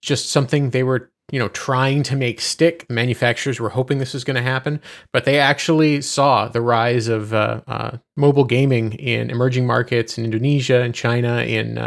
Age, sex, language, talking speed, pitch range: 30-49, male, English, 185 wpm, 115-140 Hz